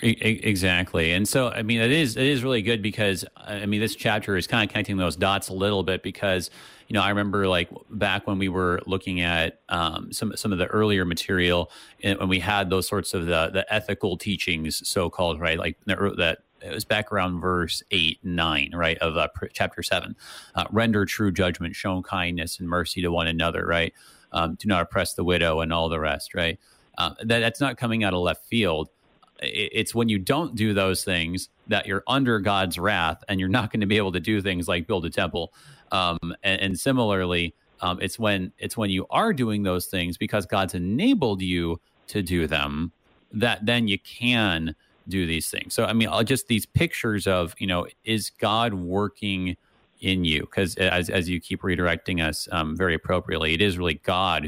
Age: 30-49